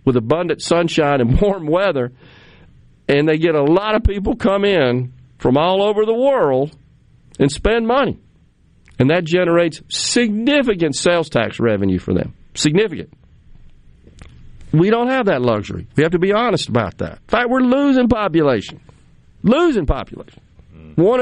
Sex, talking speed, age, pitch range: male, 150 wpm, 50-69, 125-195 Hz